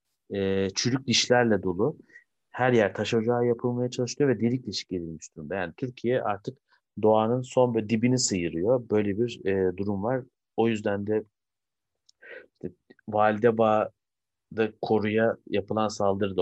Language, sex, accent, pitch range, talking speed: Turkish, male, native, 95-115 Hz, 125 wpm